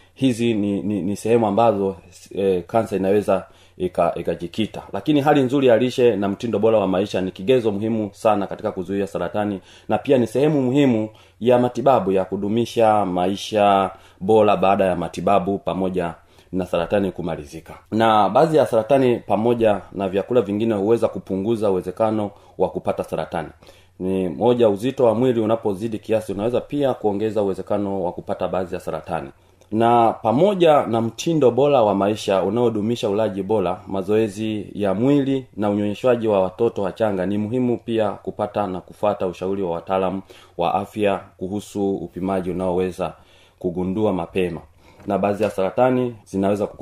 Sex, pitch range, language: male, 95-115 Hz, Swahili